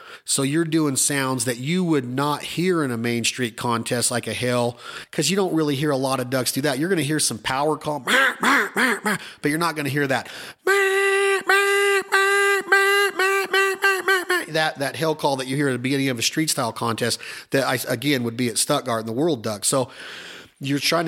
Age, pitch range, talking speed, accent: 30-49, 120-145 Hz, 195 wpm, American